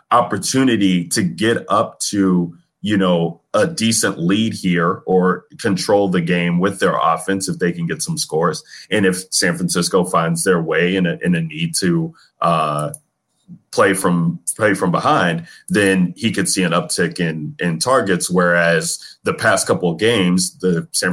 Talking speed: 165 wpm